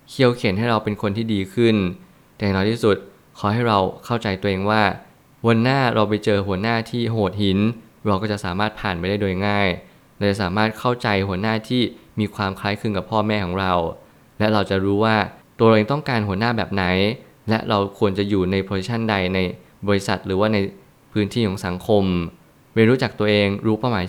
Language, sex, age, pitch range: Thai, male, 20-39, 100-115 Hz